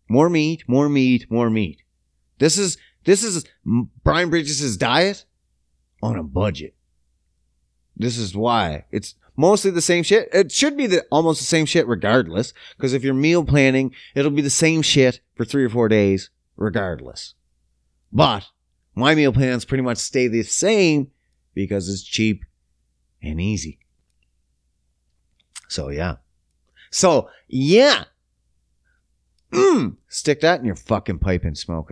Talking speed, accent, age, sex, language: 145 wpm, American, 30-49, male, English